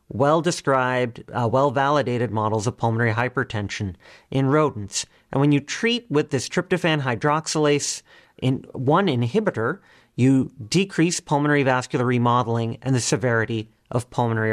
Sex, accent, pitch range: male, American, 120-160 Hz